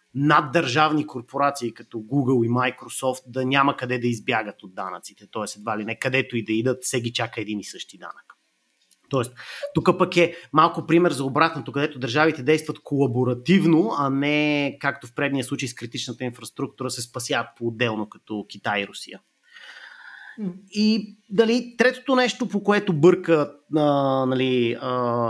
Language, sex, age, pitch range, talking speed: Bulgarian, male, 30-49, 120-150 Hz, 150 wpm